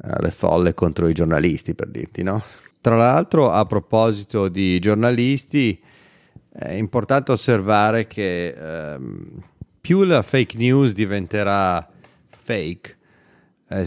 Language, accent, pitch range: Italian, native, 95-115 Hz